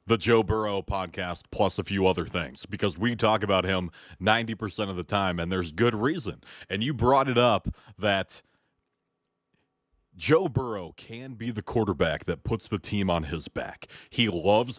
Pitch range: 95-115 Hz